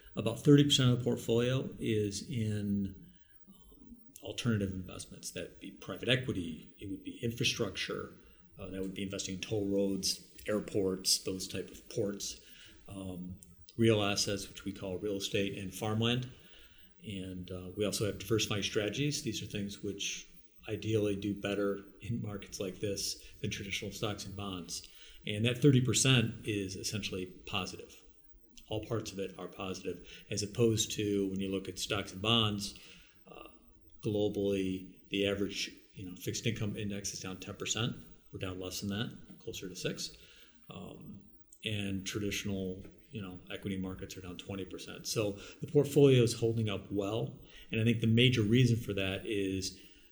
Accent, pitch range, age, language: American, 95-110 Hz, 50-69, English